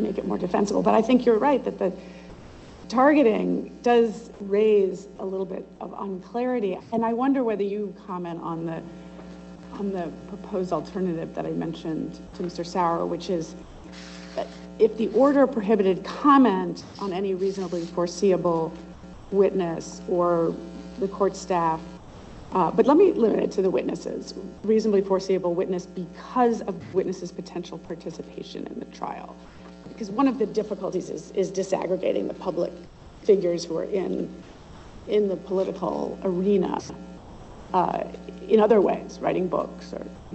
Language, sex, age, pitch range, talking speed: English, female, 40-59, 175-220 Hz, 145 wpm